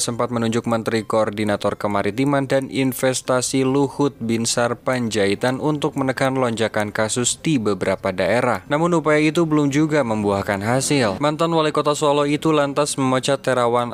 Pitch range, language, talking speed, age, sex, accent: 110-140 Hz, Indonesian, 140 wpm, 20-39, male, native